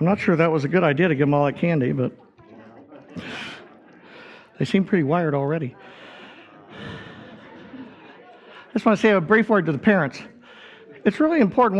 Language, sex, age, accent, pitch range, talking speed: English, male, 50-69, American, 145-190 Hz, 175 wpm